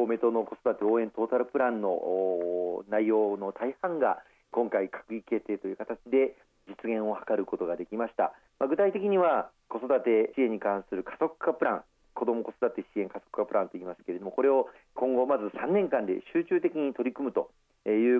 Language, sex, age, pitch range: Japanese, male, 40-59, 100-130 Hz